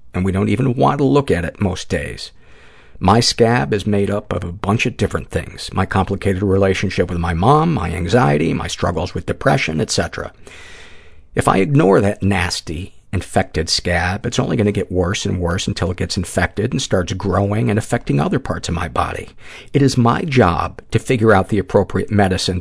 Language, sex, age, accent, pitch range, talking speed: English, male, 50-69, American, 90-110 Hz, 195 wpm